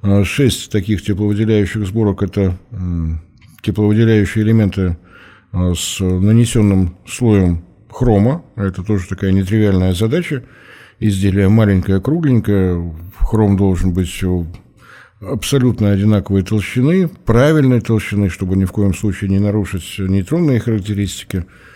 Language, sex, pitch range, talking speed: Russian, male, 95-115 Hz, 100 wpm